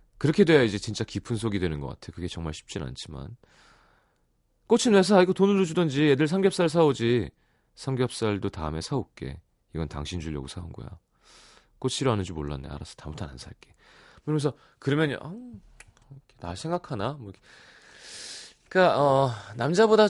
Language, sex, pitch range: Korean, male, 85-140 Hz